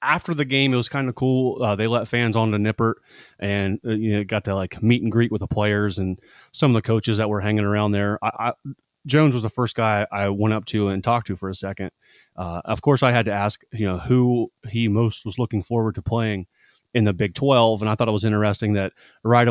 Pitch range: 100-115 Hz